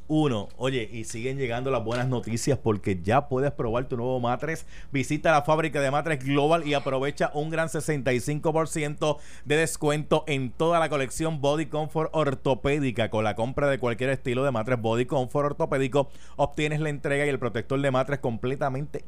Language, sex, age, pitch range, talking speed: Spanish, male, 30-49, 125-160 Hz, 175 wpm